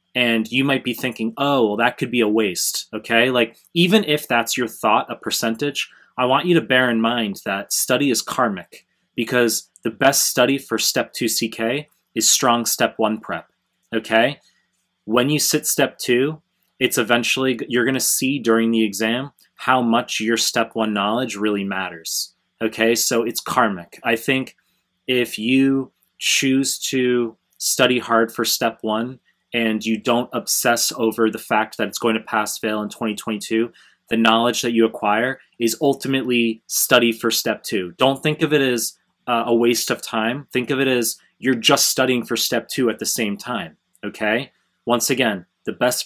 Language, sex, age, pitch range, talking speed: English, male, 20-39, 110-125 Hz, 175 wpm